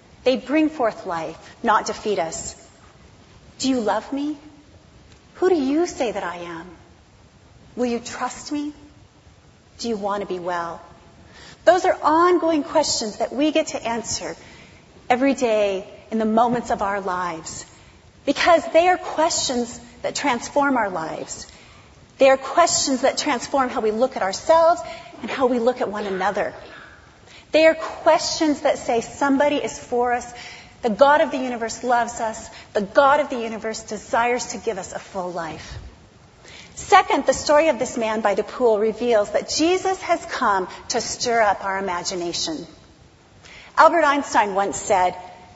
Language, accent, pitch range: English, American, 215-300 Hz